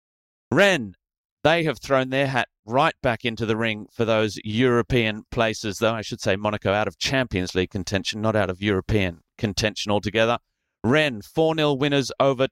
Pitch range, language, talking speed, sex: 105-125 Hz, English, 170 wpm, male